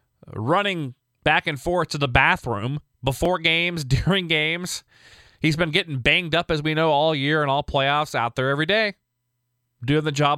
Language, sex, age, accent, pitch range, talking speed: English, male, 20-39, American, 120-160 Hz, 180 wpm